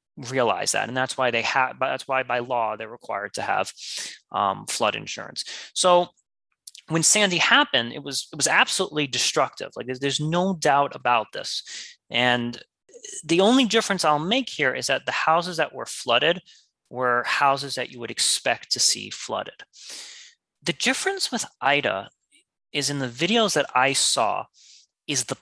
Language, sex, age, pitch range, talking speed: English, male, 20-39, 125-175 Hz, 170 wpm